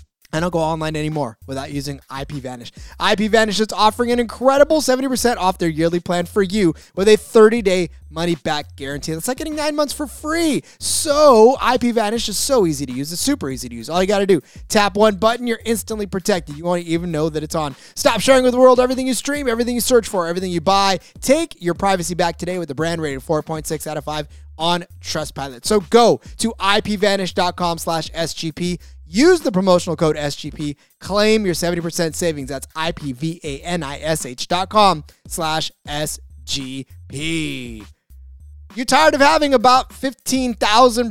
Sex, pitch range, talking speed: male, 155-225 Hz, 170 wpm